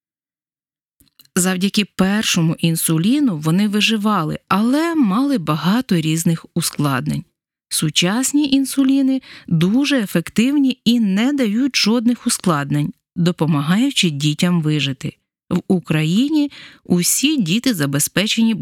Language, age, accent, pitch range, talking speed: Ukrainian, 20-39, native, 160-240 Hz, 85 wpm